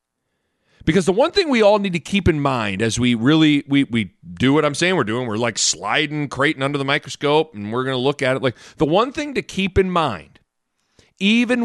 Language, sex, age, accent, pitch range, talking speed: English, male, 40-59, American, 120-195 Hz, 230 wpm